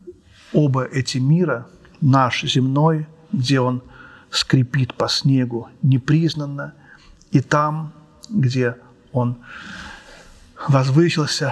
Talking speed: 85 wpm